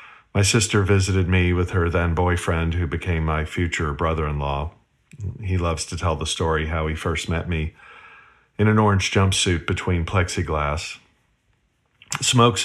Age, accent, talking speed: 50-69, American, 145 wpm